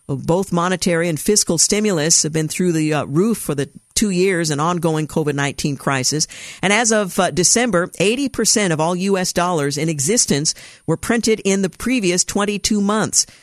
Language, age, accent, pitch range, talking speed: English, 50-69, American, 155-195 Hz, 175 wpm